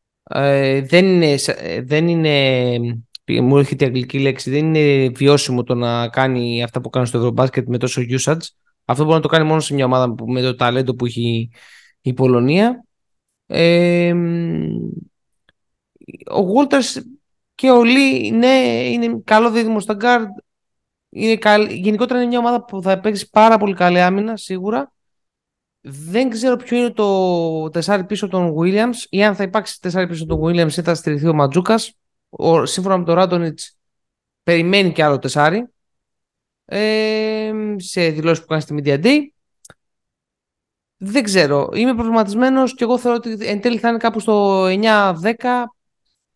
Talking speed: 150 wpm